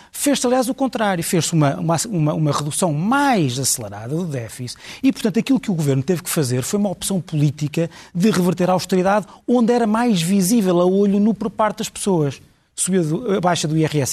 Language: Portuguese